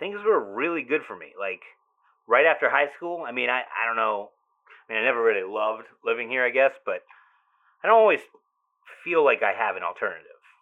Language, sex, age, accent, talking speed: English, male, 30-49, American, 210 wpm